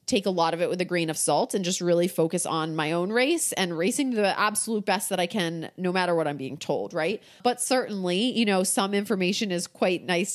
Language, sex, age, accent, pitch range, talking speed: English, female, 30-49, American, 170-210 Hz, 245 wpm